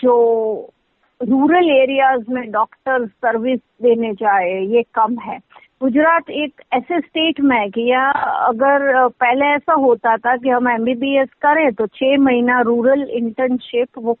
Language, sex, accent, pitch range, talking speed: Hindi, female, native, 240-280 Hz, 145 wpm